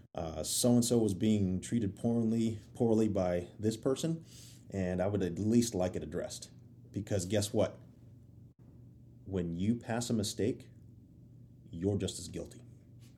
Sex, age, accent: male, 30-49, American